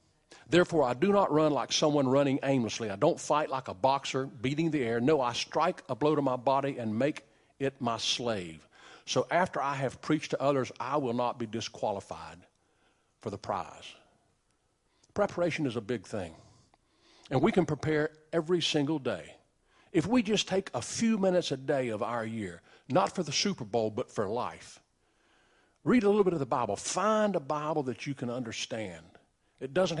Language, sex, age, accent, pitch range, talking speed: English, male, 50-69, American, 115-155 Hz, 190 wpm